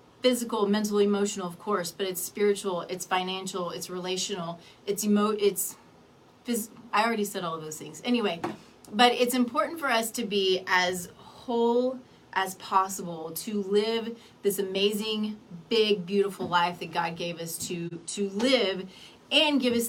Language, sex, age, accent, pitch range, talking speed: English, female, 30-49, American, 185-230 Hz, 155 wpm